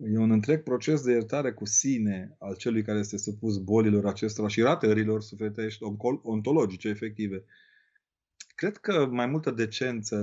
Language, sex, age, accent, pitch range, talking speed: Romanian, male, 30-49, native, 105-125 Hz, 145 wpm